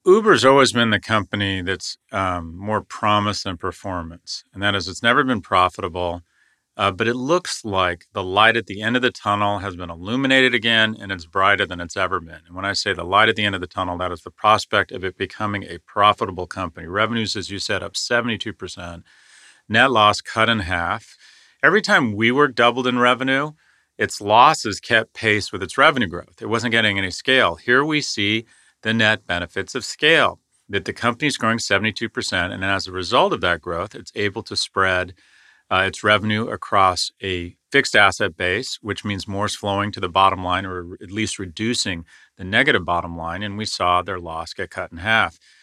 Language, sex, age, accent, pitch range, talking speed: English, male, 40-59, American, 90-110 Hz, 200 wpm